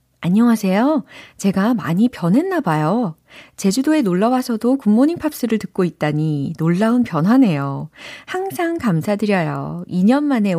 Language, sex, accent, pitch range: Korean, female, native, 160-250 Hz